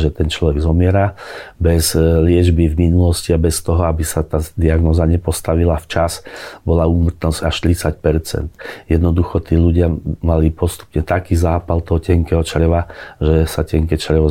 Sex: male